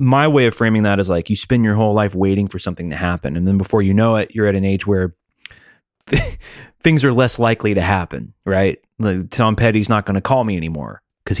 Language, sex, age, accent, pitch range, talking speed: English, male, 30-49, American, 95-115 Hz, 235 wpm